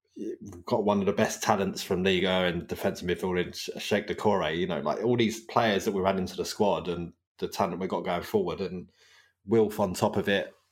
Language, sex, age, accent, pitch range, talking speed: English, male, 20-39, British, 90-105 Hz, 220 wpm